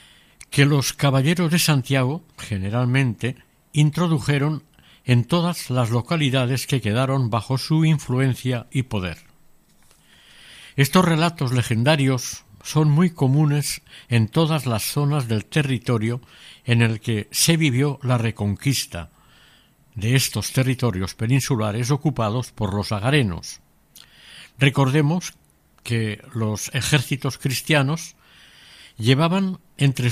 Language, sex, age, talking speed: Spanish, male, 60-79, 105 wpm